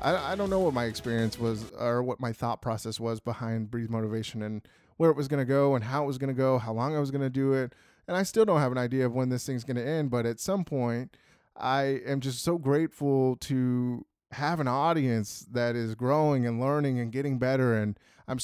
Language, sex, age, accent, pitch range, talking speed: English, male, 20-39, American, 120-140 Hz, 245 wpm